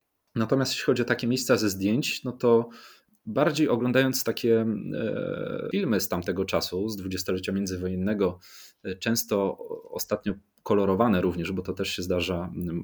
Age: 30-49